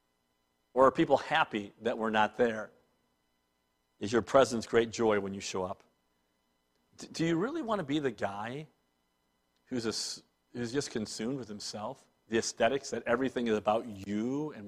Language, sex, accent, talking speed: English, male, American, 160 wpm